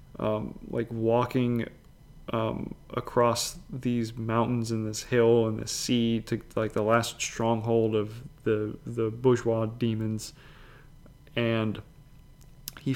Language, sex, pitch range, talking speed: English, male, 110-130 Hz, 115 wpm